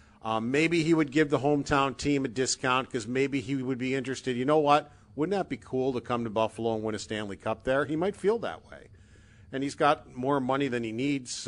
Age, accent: 50-69, American